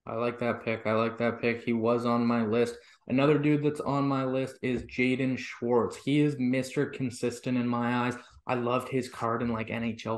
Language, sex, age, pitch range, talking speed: English, male, 20-39, 115-140 Hz, 210 wpm